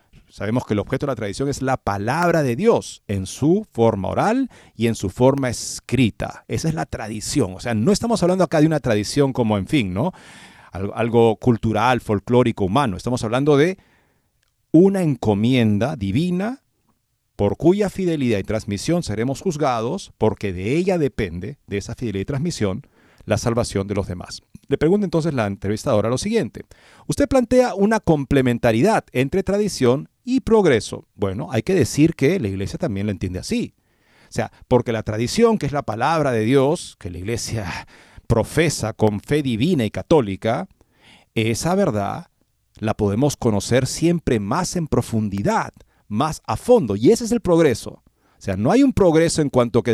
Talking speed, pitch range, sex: 170 wpm, 105-160 Hz, male